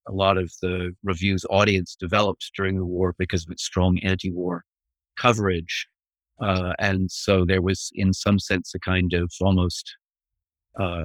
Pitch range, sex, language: 90-105 Hz, male, English